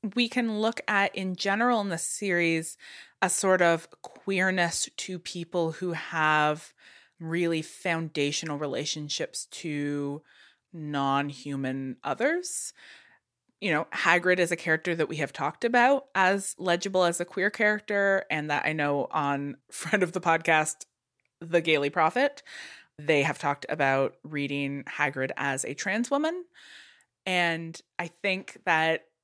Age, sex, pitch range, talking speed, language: 20-39, female, 145-195 Hz, 135 wpm, English